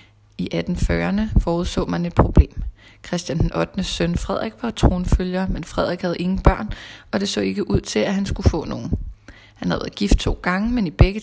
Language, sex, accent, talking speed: Danish, female, native, 200 wpm